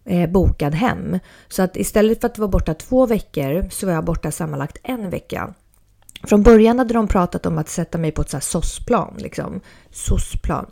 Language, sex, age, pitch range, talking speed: English, female, 30-49, 165-230 Hz, 200 wpm